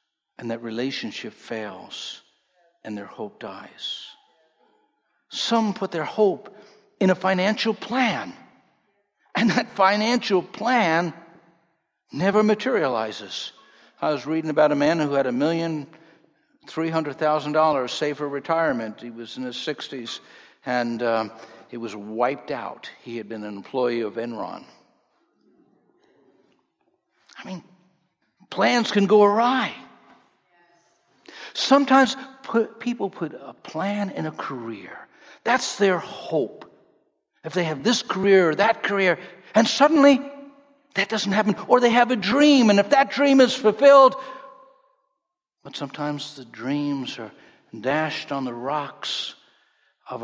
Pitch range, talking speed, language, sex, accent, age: 150-245 Hz, 130 wpm, English, male, American, 60-79